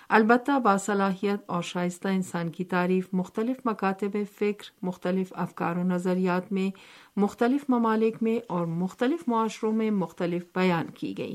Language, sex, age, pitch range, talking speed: Urdu, female, 50-69, 180-225 Hz, 135 wpm